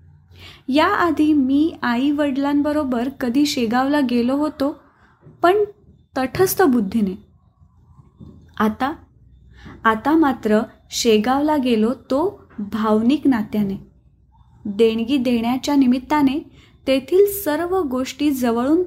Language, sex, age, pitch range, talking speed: Marathi, female, 20-39, 230-300 Hz, 85 wpm